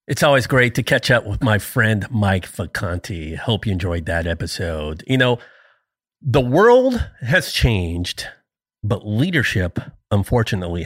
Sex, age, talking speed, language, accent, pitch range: male, 40-59, 140 wpm, English, American, 105-140 Hz